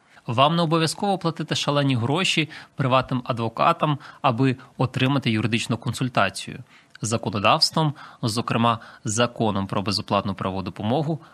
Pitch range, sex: 110-145 Hz, male